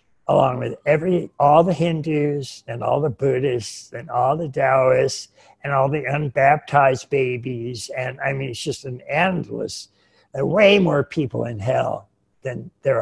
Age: 60-79